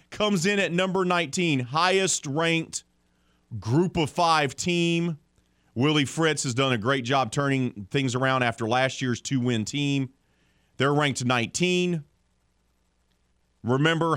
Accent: American